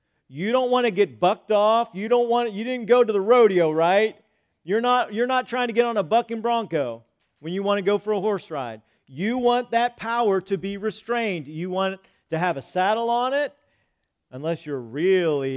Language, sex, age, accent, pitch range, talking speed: English, male, 40-59, American, 135-190 Hz, 210 wpm